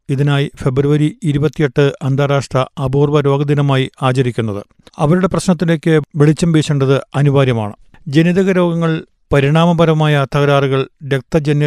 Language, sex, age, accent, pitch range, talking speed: Malayalam, male, 50-69, native, 135-155 Hz, 85 wpm